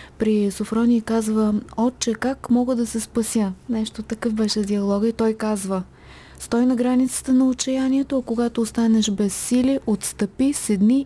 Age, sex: 20-39, female